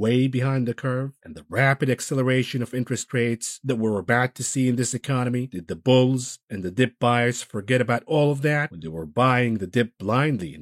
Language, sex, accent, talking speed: English, male, American, 220 wpm